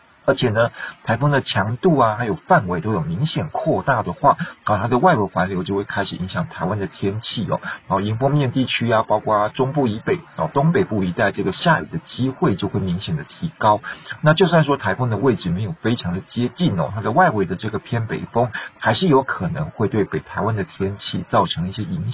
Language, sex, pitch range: Chinese, male, 100-135 Hz